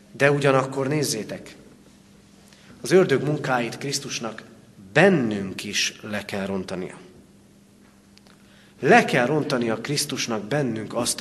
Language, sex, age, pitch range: Hungarian, male, 40-59, 110-140 Hz